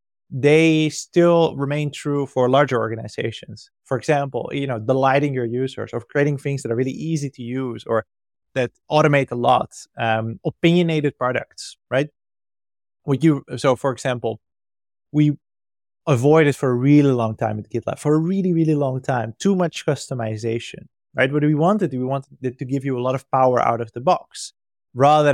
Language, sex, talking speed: English, male, 175 wpm